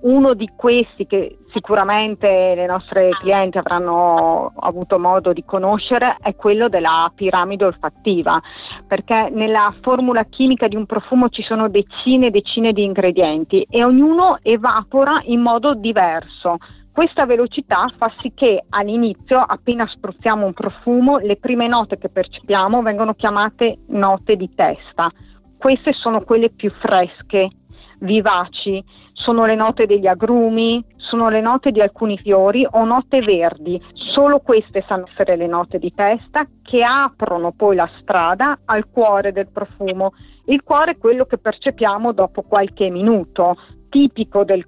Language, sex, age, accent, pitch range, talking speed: Italian, female, 40-59, native, 190-235 Hz, 140 wpm